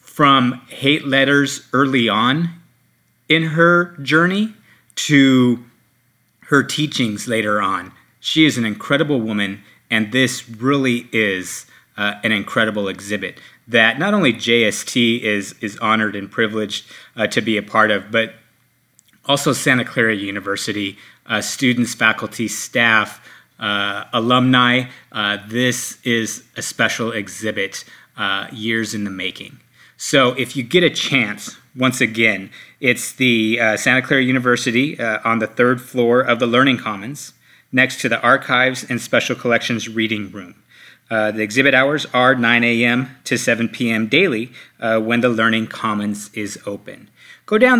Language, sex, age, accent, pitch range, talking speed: English, male, 30-49, American, 110-140 Hz, 145 wpm